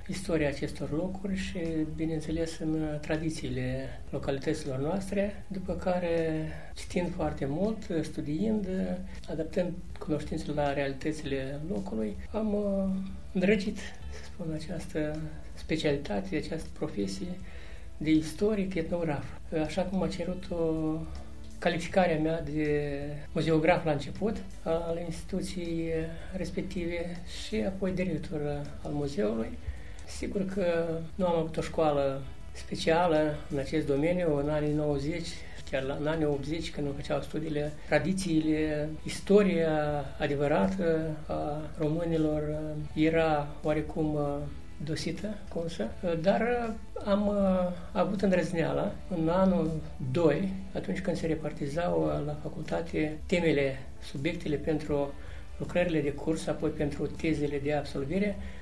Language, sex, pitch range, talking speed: Romanian, male, 150-175 Hz, 105 wpm